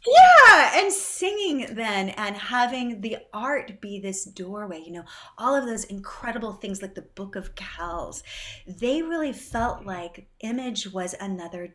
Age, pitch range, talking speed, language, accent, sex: 30-49, 185-240 Hz, 155 wpm, English, American, female